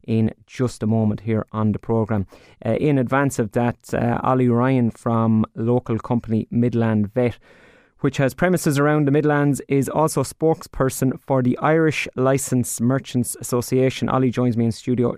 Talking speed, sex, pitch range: 160 wpm, male, 115-130 Hz